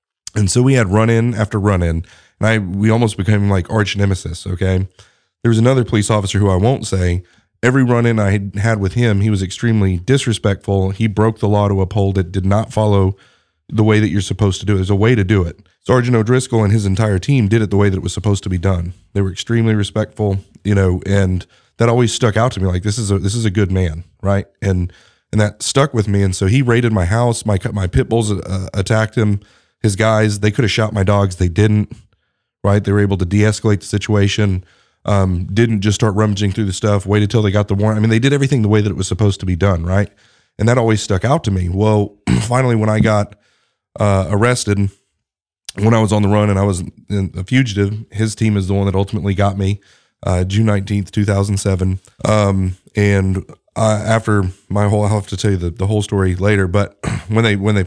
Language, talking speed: English, 235 wpm